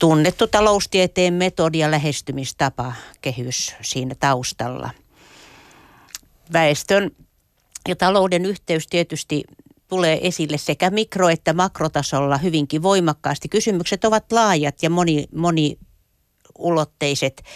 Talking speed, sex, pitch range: 90 wpm, female, 140-170 Hz